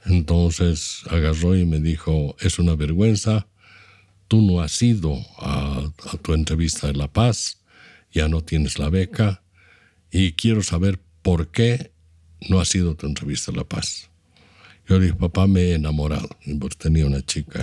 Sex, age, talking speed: male, 60-79, 165 wpm